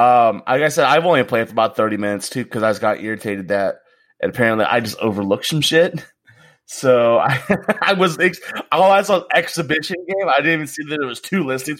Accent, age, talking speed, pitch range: American, 20-39, 225 wpm, 105-155 Hz